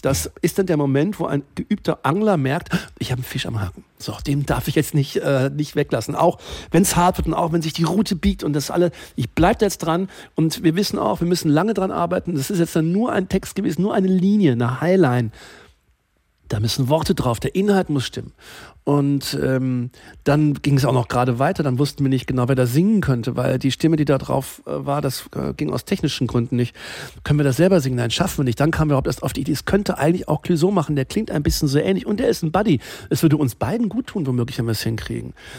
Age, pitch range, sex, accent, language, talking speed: 50-69, 135-175 Hz, male, German, German, 250 wpm